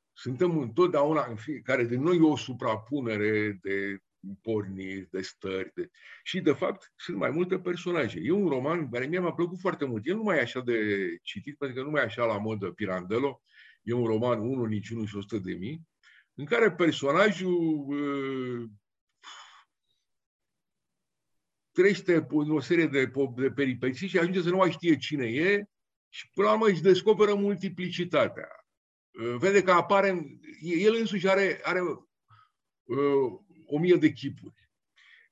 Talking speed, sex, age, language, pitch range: 155 wpm, male, 50-69, English, 125-190 Hz